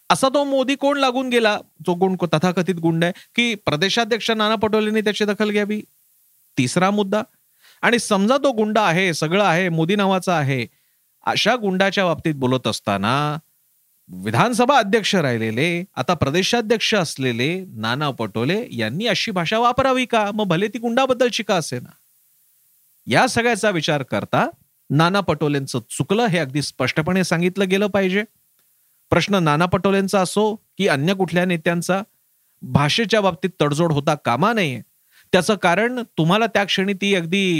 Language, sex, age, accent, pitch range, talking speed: Marathi, male, 40-59, native, 150-210 Hz, 140 wpm